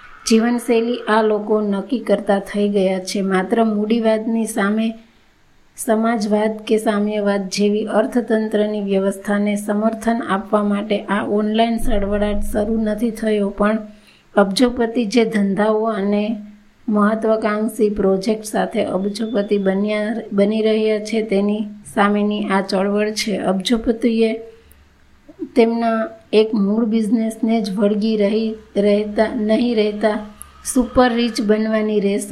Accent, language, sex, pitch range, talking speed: native, Gujarati, female, 205-225 Hz, 90 wpm